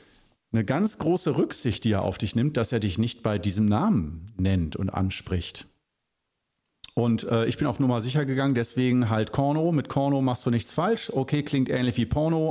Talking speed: 195 wpm